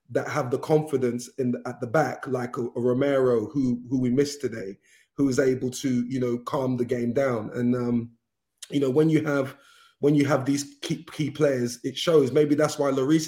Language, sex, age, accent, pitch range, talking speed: English, male, 30-49, British, 125-145 Hz, 210 wpm